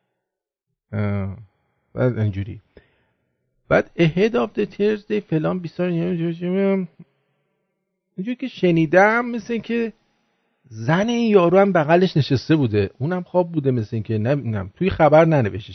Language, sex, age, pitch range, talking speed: English, male, 50-69, 120-170 Hz, 120 wpm